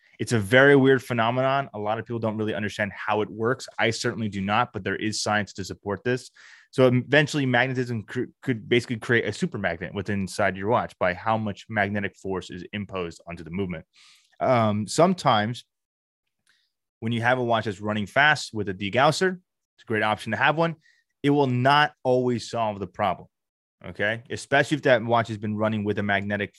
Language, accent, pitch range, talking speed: English, American, 100-120 Hz, 195 wpm